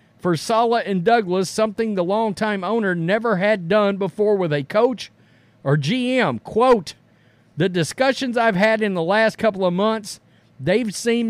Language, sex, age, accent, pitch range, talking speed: English, male, 50-69, American, 145-215 Hz, 160 wpm